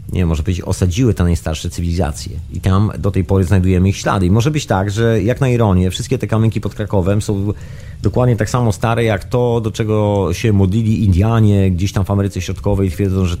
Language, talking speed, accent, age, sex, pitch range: Polish, 215 wpm, native, 30-49, male, 95-110 Hz